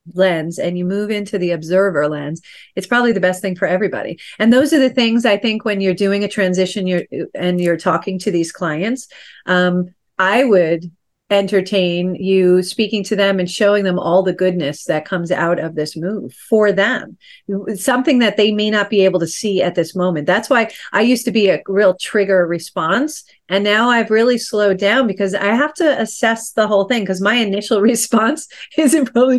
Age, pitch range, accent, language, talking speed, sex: 40-59, 185-230 Hz, American, English, 200 wpm, female